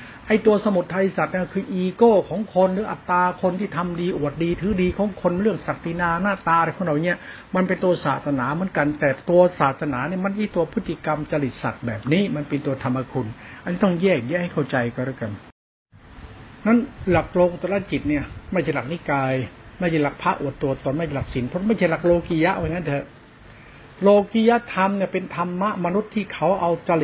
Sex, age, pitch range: male, 60-79, 135-180 Hz